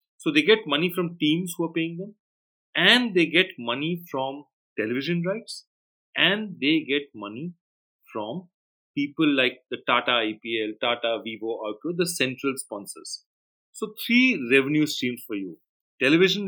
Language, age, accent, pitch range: English, 40-59, Indian, 135-195 Hz